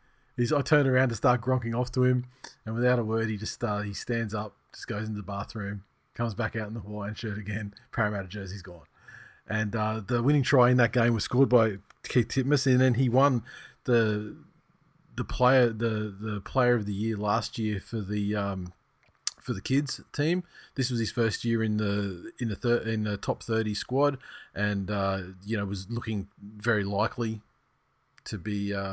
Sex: male